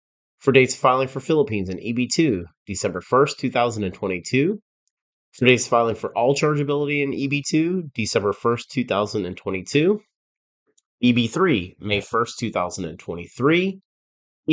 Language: English